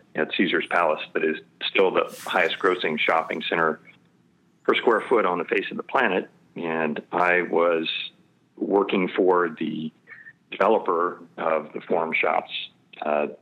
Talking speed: 140 wpm